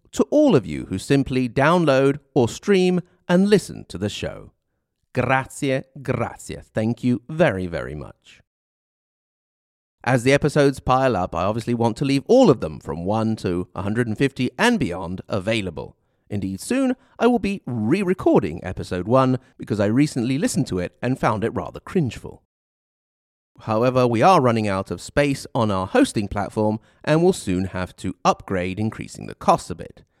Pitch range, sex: 105-155 Hz, male